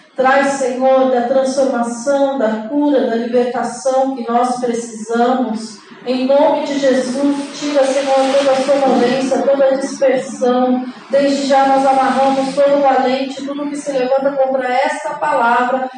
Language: Portuguese